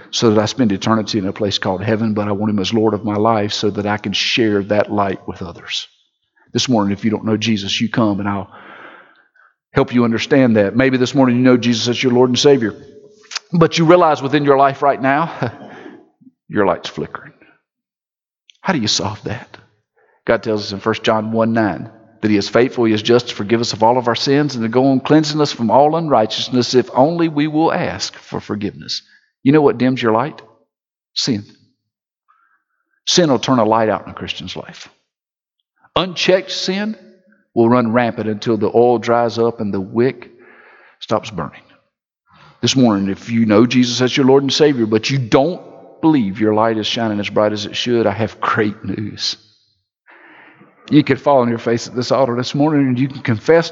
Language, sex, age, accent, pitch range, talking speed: English, male, 50-69, American, 110-135 Hz, 205 wpm